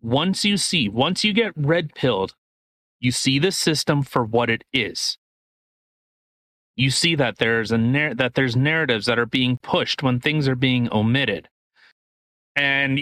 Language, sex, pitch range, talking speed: English, male, 120-155 Hz, 155 wpm